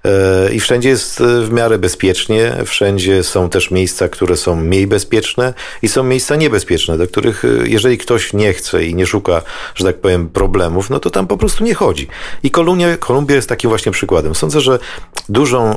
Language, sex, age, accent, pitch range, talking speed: Polish, male, 50-69, native, 85-100 Hz, 185 wpm